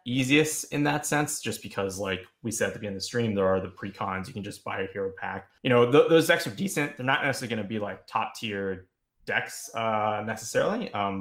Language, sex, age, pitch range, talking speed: English, male, 20-39, 95-115 Hz, 250 wpm